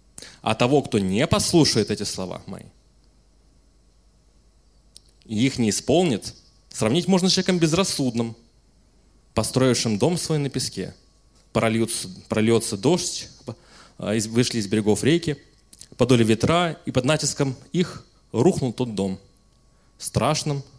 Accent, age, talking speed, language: native, 20-39, 115 wpm, Russian